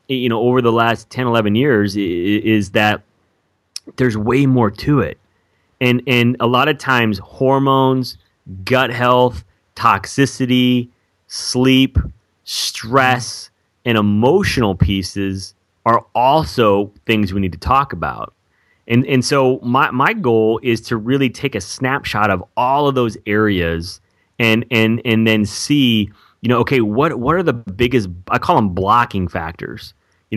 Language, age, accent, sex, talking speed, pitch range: English, 30-49, American, male, 145 wpm, 100-125 Hz